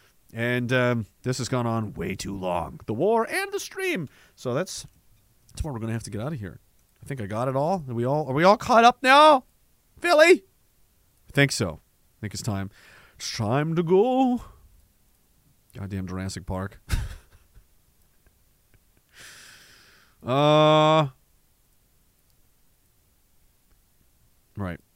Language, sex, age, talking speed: English, male, 30-49, 140 wpm